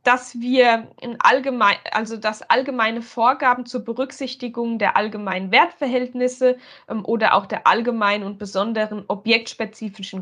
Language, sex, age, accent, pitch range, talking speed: German, female, 20-39, German, 215-270 Hz, 115 wpm